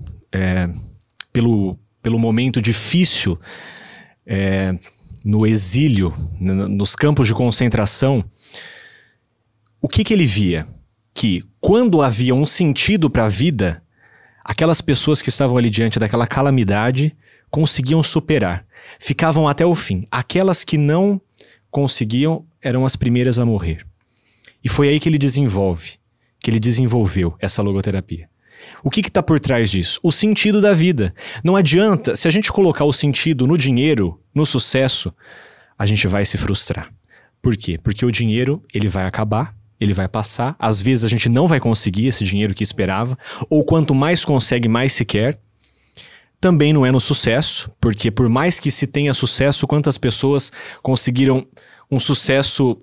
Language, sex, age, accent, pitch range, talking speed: Portuguese, male, 30-49, Brazilian, 105-145 Hz, 150 wpm